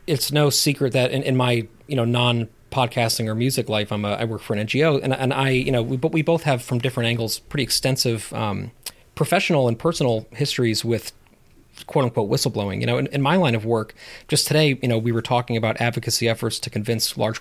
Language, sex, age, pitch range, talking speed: English, male, 30-49, 115-135 Hz, 230 wpm